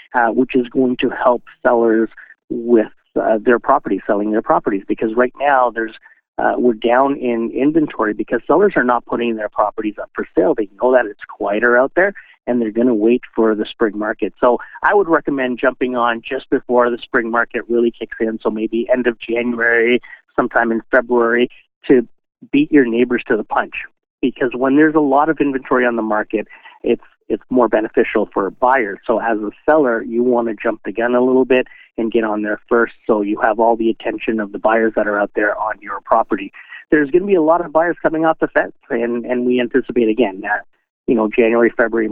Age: 40-59